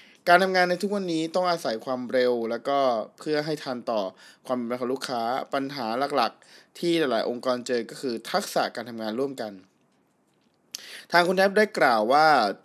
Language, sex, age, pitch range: Thai, male, 20-39, 120-155 Hz